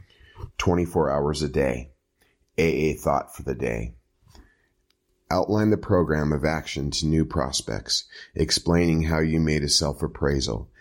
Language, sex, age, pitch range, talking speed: English, male, 30-49, 70-85 Hz, 130 wpm